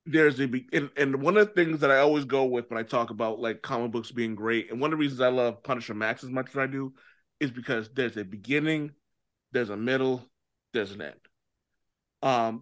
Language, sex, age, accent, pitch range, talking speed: English, male, 30-49, American, 120-160 Hz, 235 wpm